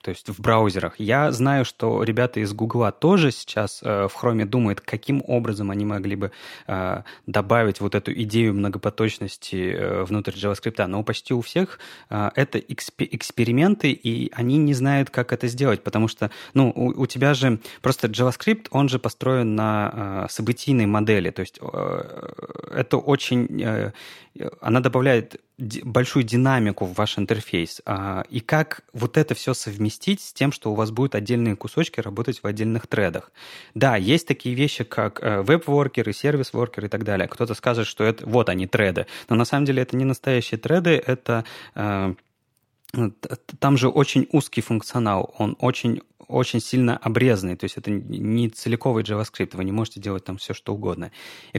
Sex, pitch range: male, 105-135 Hz